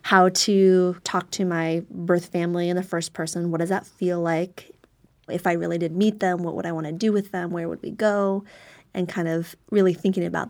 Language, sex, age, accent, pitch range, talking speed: English, female, 20-39, American, 165-185 Hz, 230 wpm